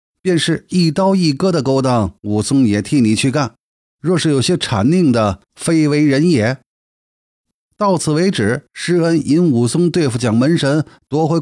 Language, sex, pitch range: Chinese, male, 115-165 Hz